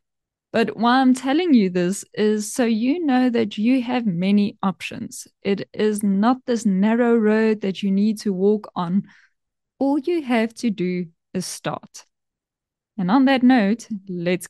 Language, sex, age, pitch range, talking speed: English, female, 20-39, 185-245 Hz, 160 wpm